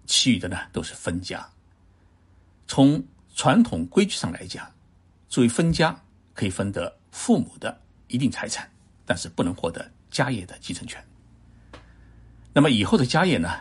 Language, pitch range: Chinese, 90-120 Hz